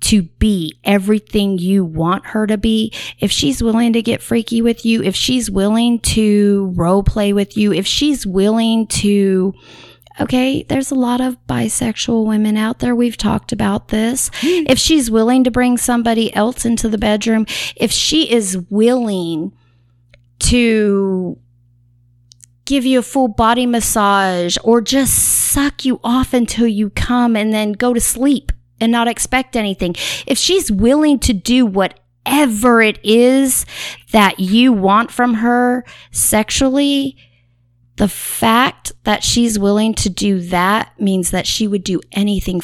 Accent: American